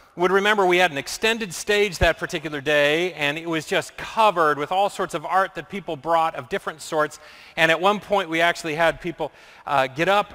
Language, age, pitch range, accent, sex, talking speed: English, 40-59, 170-225 Hz, American, male, 215 wpm